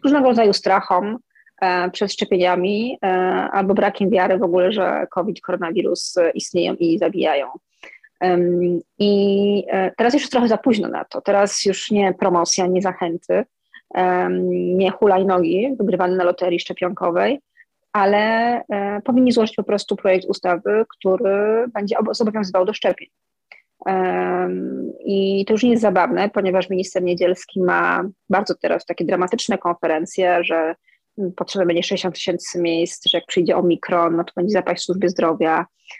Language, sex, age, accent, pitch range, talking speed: Polish, female, 30-49, native, 180-210 Hz, 135 wpm